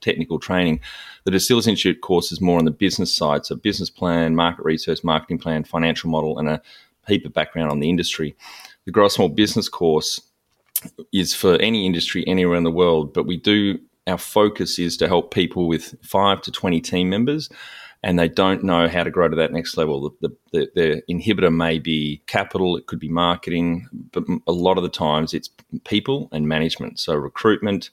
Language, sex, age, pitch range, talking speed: English, male, 30-49, 80-95 Hz, 195 wpm